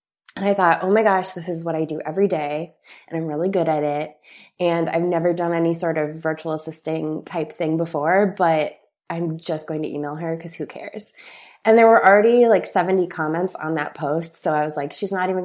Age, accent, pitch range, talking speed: 20-39, American, 165-205 Hz, 225 wpm